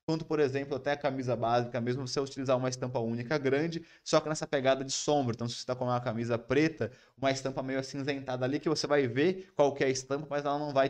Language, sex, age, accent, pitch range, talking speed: Portuguese, male, 20-39, Brazilian, 120-145 Hz, 240 wpm